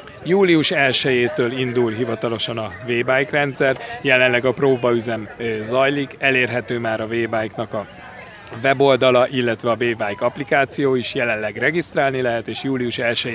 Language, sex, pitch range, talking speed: Hungarian, male, 115-135 Hz, 120 wpm